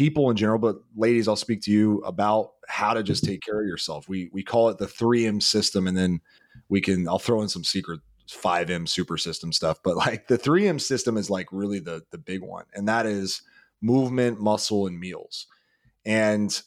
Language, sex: English, male